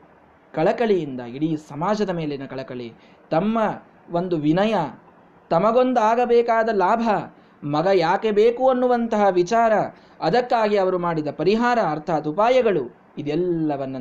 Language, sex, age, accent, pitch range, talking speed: Kannada, male, 20-39, native, 130-220 Hz, 100 wpm